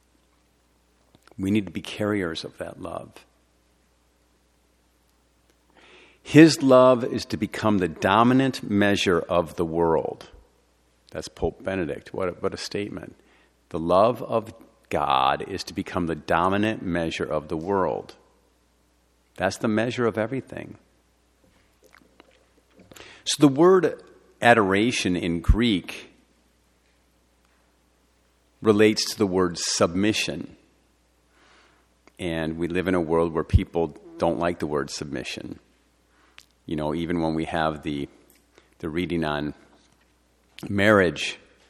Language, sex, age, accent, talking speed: English, male, 50-69, American, 115 wpm